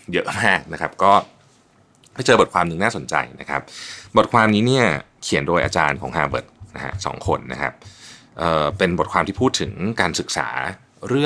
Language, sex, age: Thai, male, 30-49